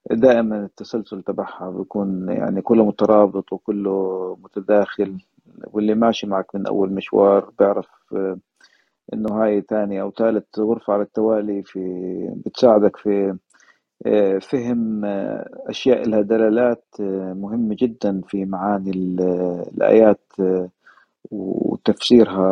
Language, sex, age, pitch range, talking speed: Arabic, male, 40-59, 95-110 Hz, 95 wpm